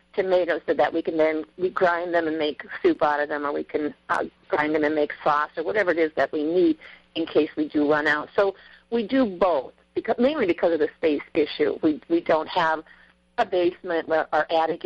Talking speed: 230 wpm